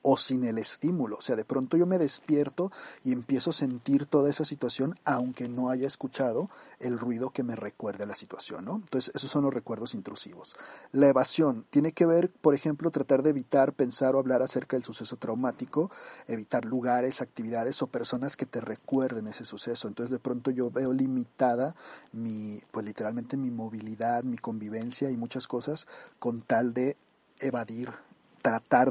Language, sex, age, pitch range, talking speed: Spanish, male, 40-59, 120-135 Hz, 175 wpm